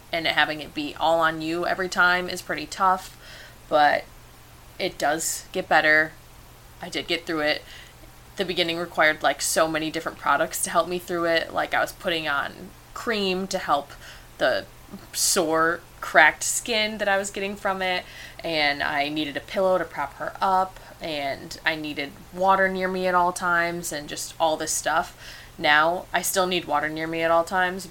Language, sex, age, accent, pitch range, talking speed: English, female, 20-39, American, 150-180 Hz, 185 wpm